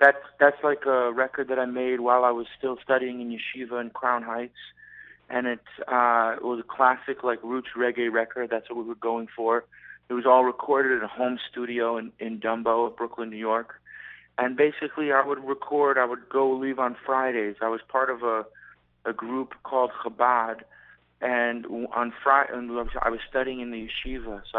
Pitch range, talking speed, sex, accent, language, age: 105-125 Hz, 195 wpm, male, American, English, 30-49